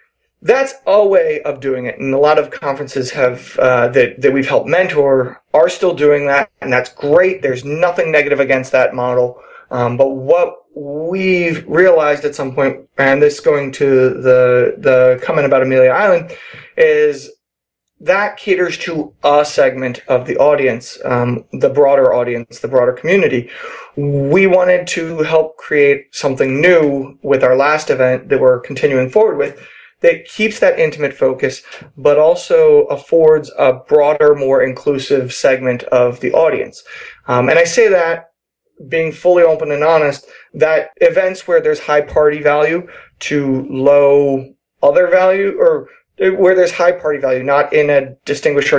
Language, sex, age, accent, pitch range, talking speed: English, male, 30-49, American, 135-200 Hz, 160 wpm